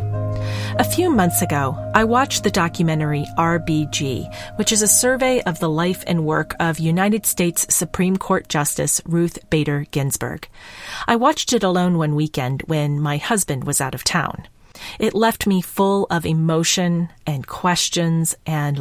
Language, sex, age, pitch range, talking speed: English, female, 40-59, 155-210 Hz, 155 wpm